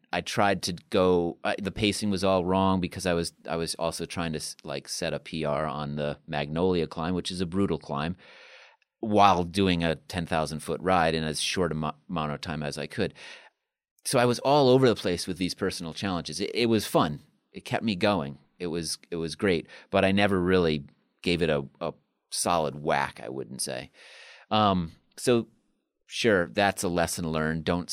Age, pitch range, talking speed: 30-49, 75-95 Hz, 200 wpm